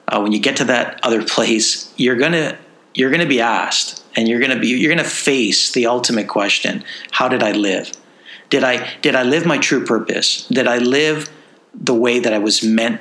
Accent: American